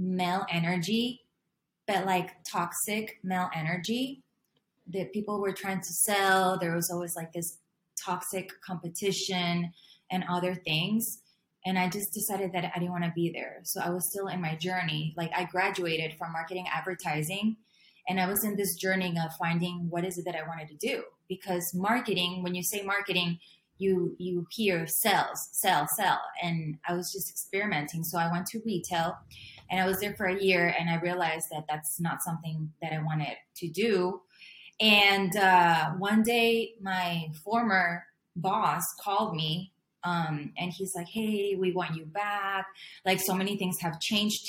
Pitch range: 170-195 Hz